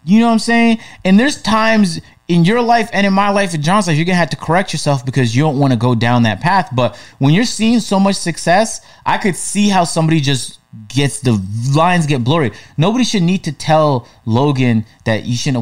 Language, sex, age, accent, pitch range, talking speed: English, male, 20-39, American, 120-165 Hz, 230 wpm